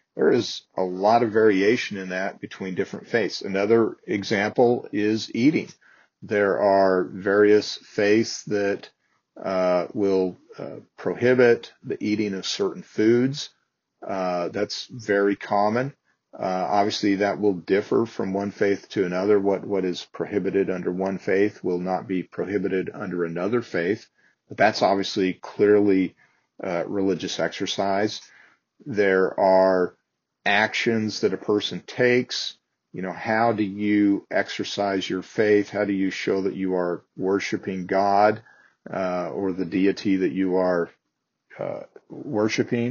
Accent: American